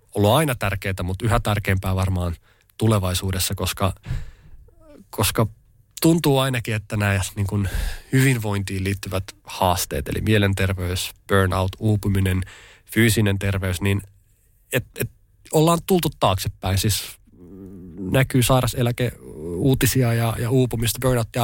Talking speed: 110 wpm